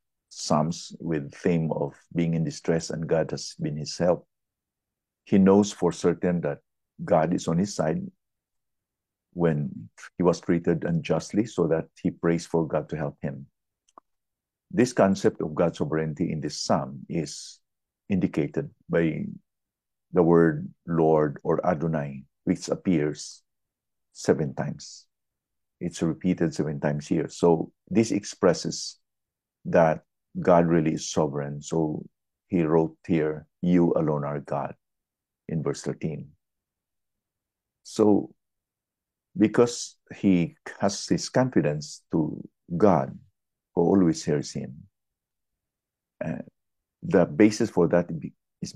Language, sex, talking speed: English, male, 120 wpm